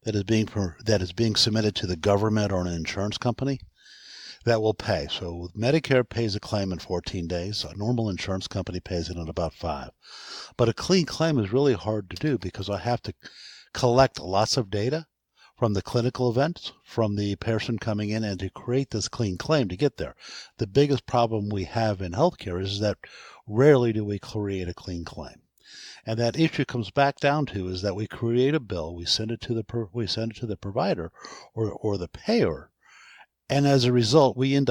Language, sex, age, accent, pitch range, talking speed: English, male, 50-69, American, 100-125 Hz, 205 wpm